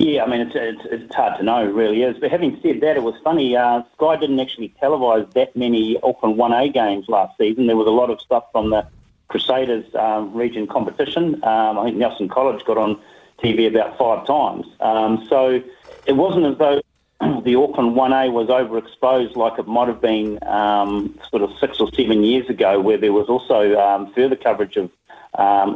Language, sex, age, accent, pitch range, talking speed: English, male, 40-59, Australian, 105-125 Hz, 200 wpm